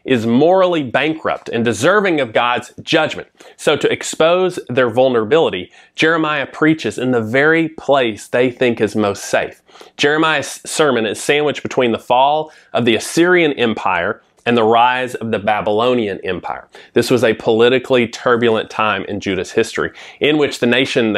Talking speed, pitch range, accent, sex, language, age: 155 wpm, 115-150 Hz, American, male, English, 30-49